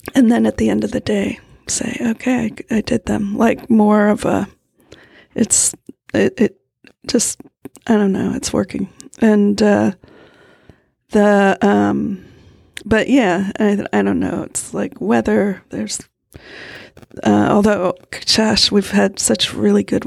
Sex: female